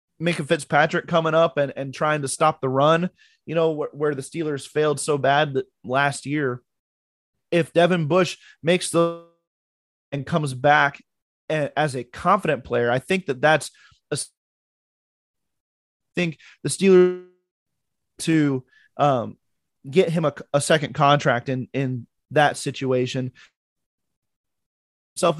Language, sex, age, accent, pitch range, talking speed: English, male, 20-39, American, 135-170 Hz, 135 wpm